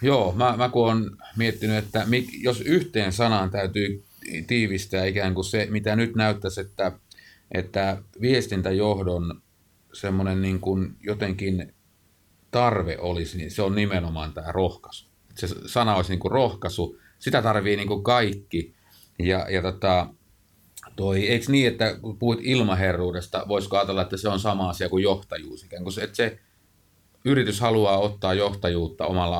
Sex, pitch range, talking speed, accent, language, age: male, 90-110 Hz, 145 wpm, native, Finnish, 30-49